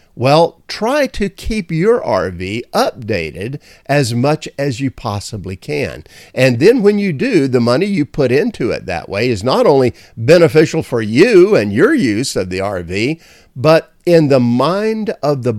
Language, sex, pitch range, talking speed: English, male, 110-175 Hz, 170 wpm